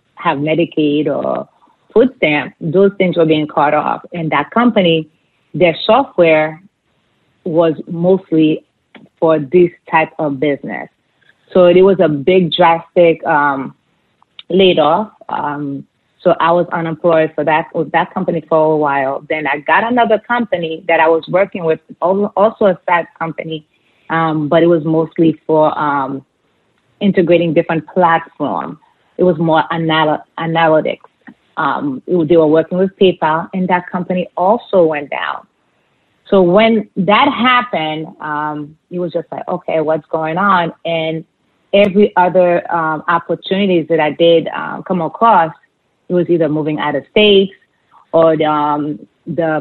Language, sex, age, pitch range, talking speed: English, female, 30-49, 155-180 Hz, 150 wpm